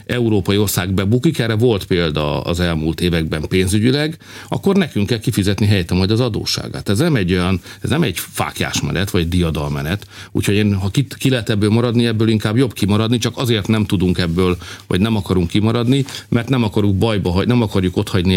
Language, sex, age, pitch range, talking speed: Hungarian, male, 50-69, 95-120 Hz, 190 wpm